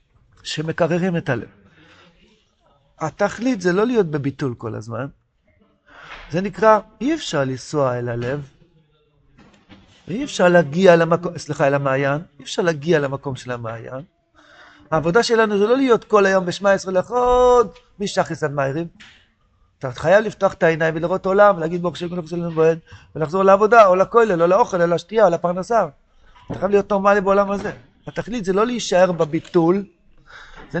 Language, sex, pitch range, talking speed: Hebrew, male, 150-205 Hz, 135 wpm